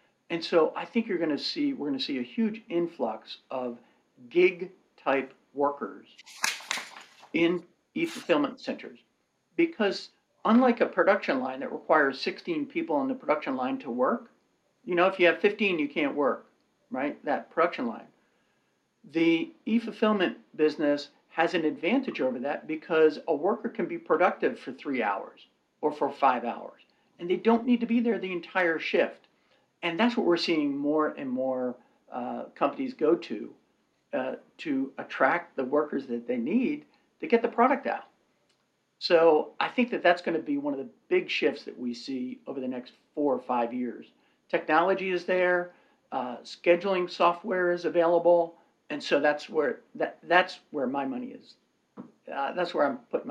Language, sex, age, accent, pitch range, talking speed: English, male, 50-69, American, 155-250 Hz, 170 wpm